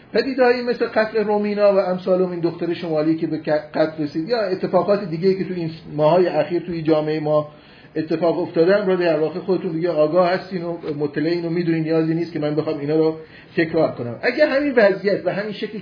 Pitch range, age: 150-190 Hz, 40-59